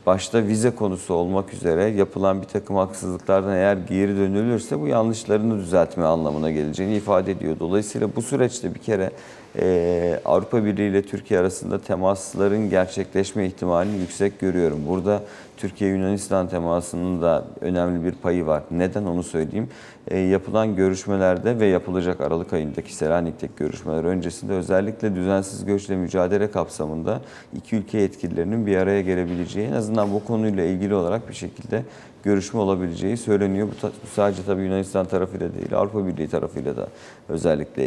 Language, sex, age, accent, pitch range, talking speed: Turkish, male, 40-59, native, 90-105 Hz, 140 wpm